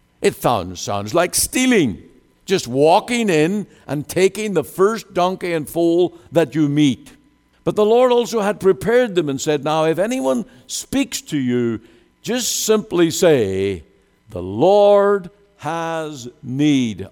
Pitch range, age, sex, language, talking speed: 95-150 Hz, 60-79, male, English, 140 wpm